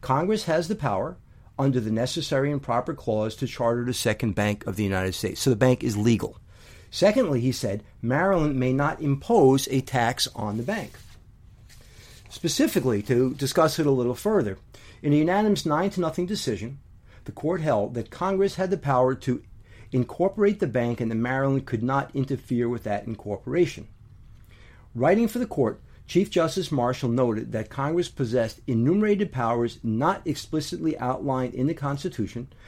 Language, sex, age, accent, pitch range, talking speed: English, male, 50-69, American, 110-150 Hz, 165 wpm